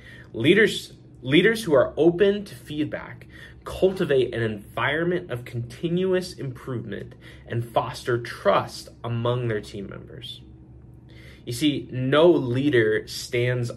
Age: 20-39